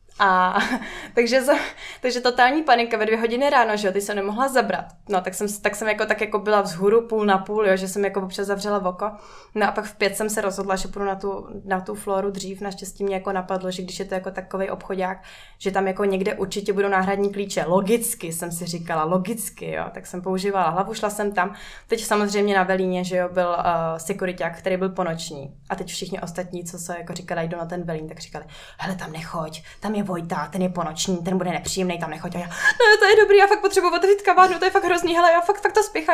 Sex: female